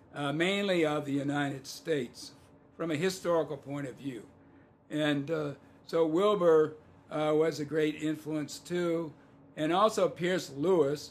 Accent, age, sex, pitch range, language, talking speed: American, 60-79, male, 135-155 Hz, English, 140 wpm